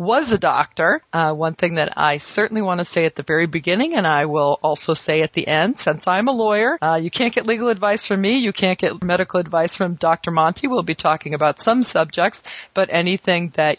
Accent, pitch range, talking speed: American, 155-200 Hz, 230 wpm